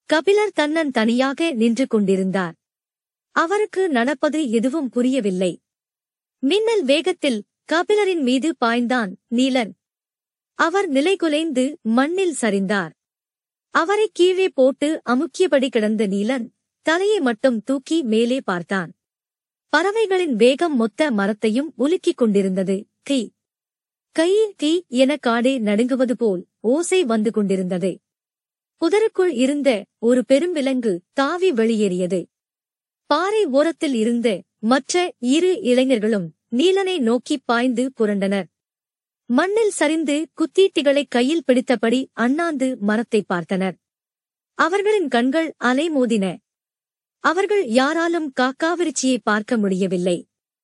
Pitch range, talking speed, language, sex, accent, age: 225-320 Hz, 90 wpm, Tamil, male, native, 50-69